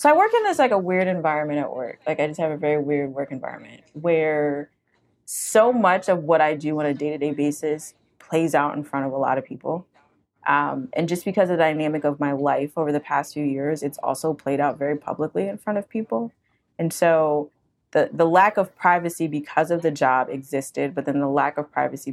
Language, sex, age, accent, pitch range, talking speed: English, female, 20-39, American, 140-170 Hz, 225 wpm